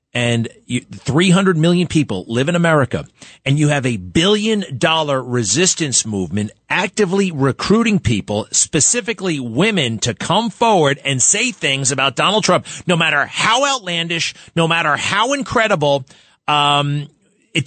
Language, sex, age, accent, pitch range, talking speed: English, male, 40-59, American, 125-180 Hz, 130 wpm